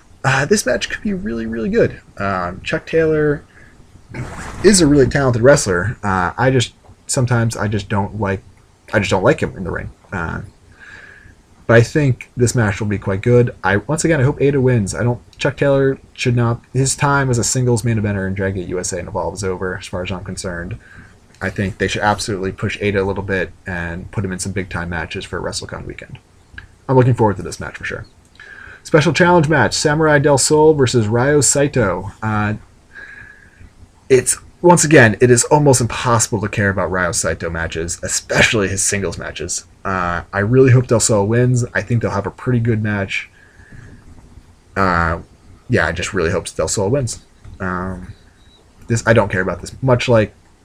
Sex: male